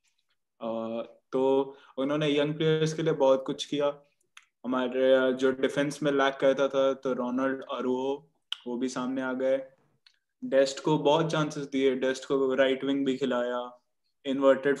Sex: male